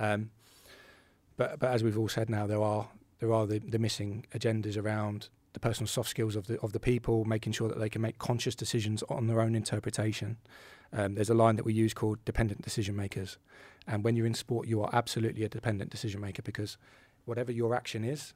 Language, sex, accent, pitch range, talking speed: English, male, British, 105-120 Hz, 210 wpm